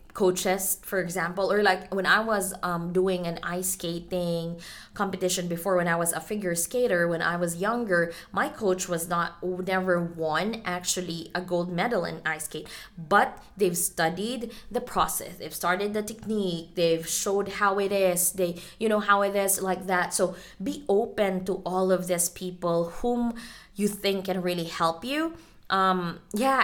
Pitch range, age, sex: 170-205 Hz, 20-39, female